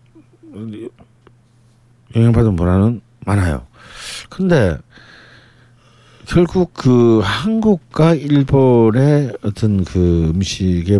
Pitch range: 95-130 Hz